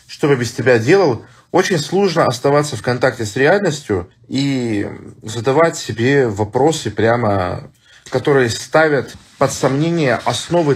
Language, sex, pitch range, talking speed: Russian, male, 105-135 Hz, 125 wpm